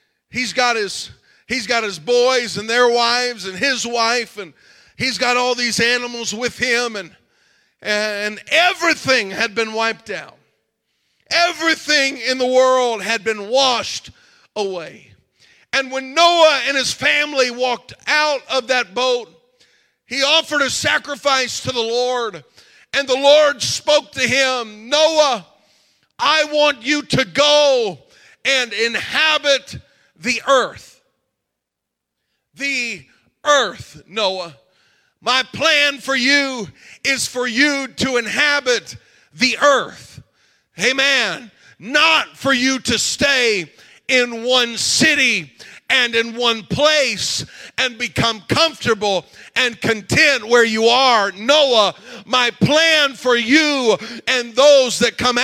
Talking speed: 120 wpm